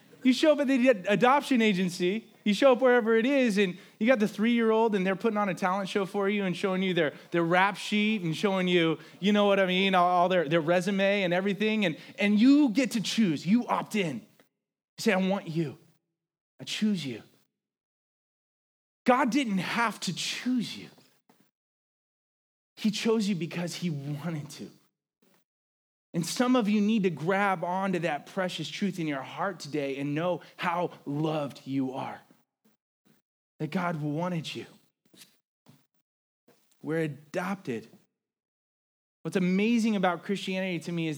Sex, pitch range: male, 160-210 Hz